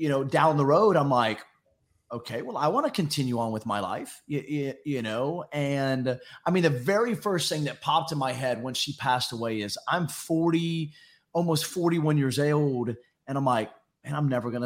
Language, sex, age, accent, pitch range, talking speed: English, male, 30-49, American, 125-160 Hz, 205 wpm